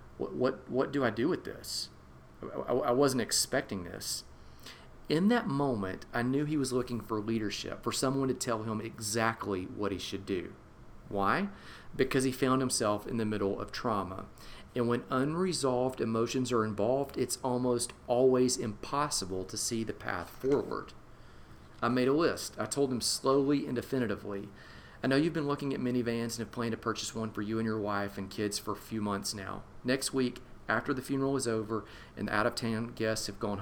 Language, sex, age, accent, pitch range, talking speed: English, male, 40-59, American, 105-130 Hz, 185 wpm